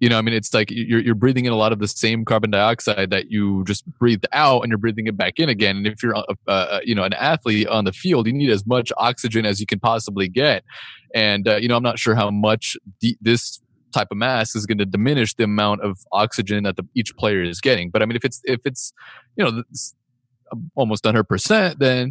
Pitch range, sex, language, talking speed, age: 105-120 Hz, male, English, 250 wpm, 30-49